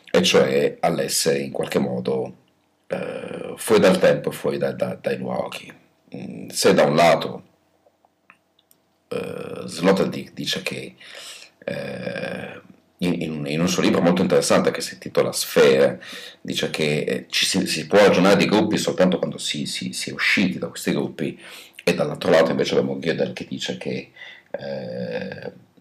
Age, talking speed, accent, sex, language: 50-69, 155 wpm, native, male, Italian